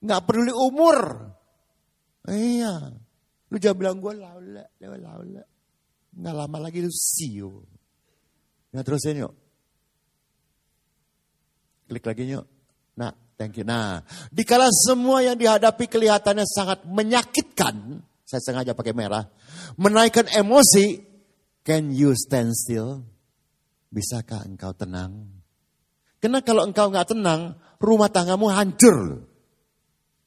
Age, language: 50-69, Indonesian